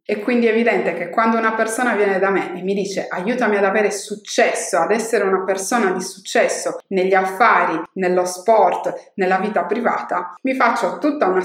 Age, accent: 20-39, native